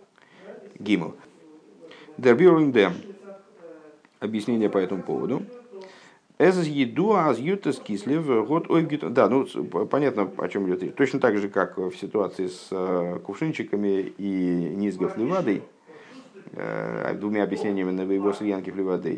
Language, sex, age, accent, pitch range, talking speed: Russian, male, 50-69, native, 95-130 Hz, 90 wpm